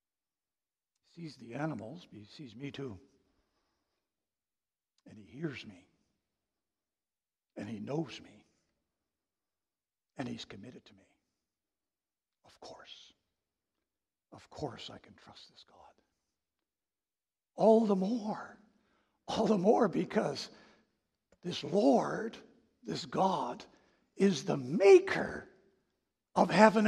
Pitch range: 225-295 Hz